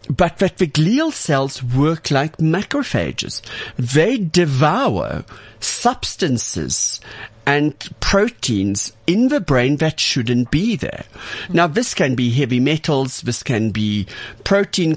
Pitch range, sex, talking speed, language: 115-165 Hz, male, 120 wpm, English